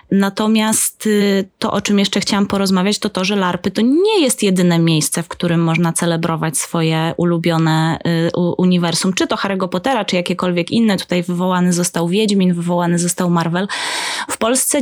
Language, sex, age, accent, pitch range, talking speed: Polish, female, 20-39, native, 175-205 Hz, 160 wpm